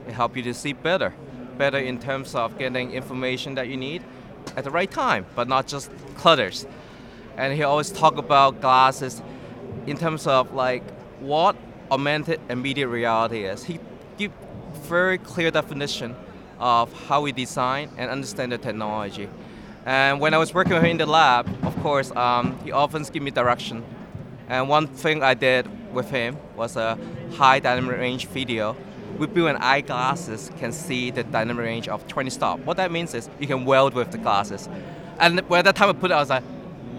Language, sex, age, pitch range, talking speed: English, male, 20-39, 125-155 Hz, 185 wpm